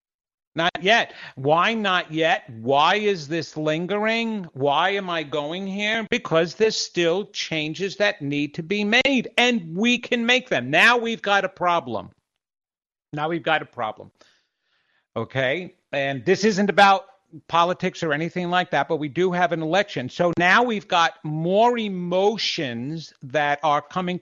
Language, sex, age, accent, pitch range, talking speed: English, male, 50-69, American, 170-235 Hz, 155 wpm